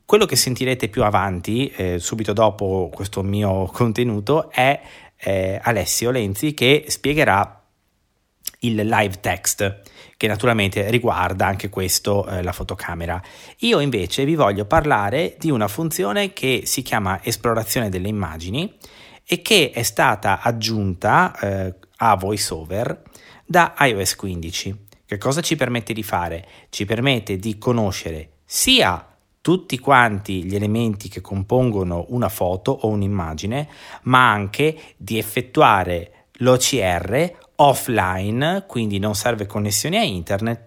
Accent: native